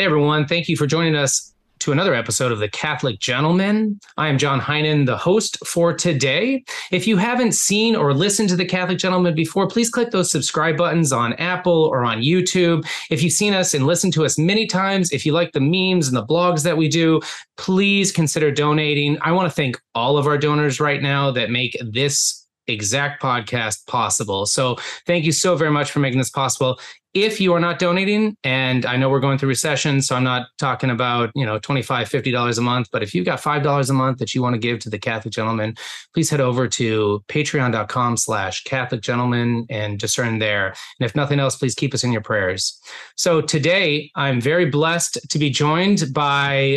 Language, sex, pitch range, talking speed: English, male, 130-170 Hz, 205 wpm